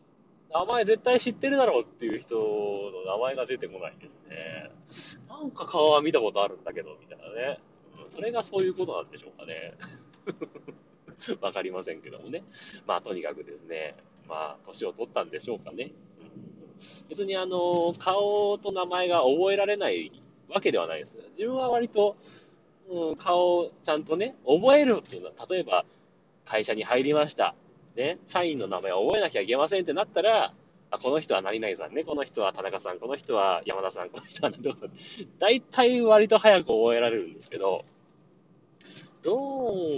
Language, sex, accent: Japanese, male, native